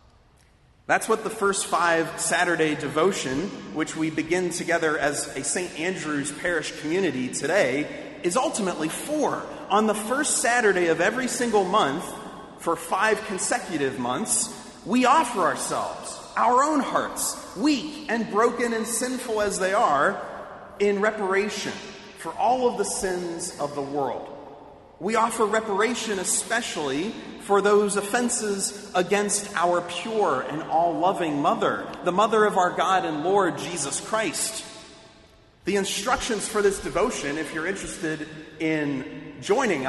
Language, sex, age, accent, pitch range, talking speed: English, male, 30-49, American, 165-220 Hz, 135 wpm